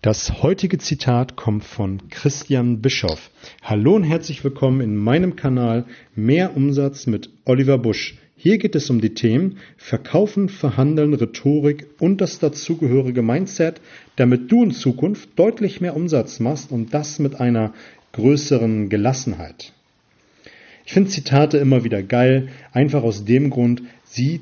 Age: 40-59